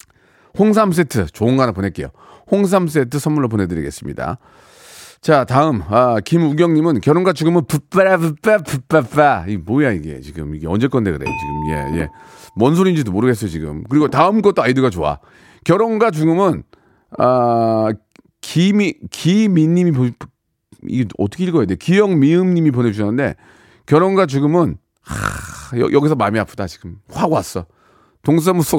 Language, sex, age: Korean, male, 40-59